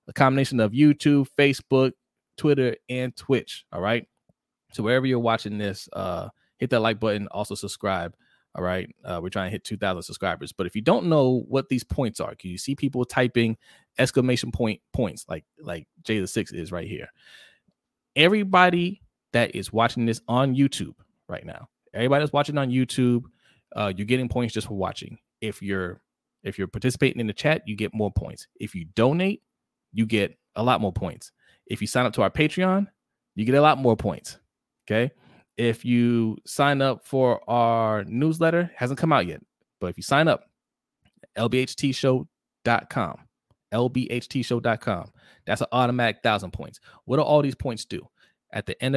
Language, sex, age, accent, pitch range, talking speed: English, male, 20-39, American, 105-130 Hz, 180 wpm